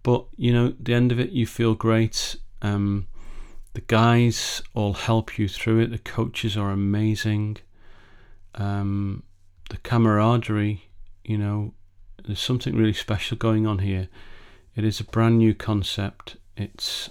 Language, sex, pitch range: English, male, 95-115 Hz